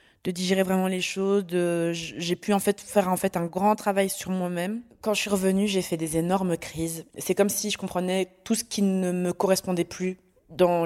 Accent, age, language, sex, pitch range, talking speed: French, 20-39, French, female, 165-190 Hz, 220 wpm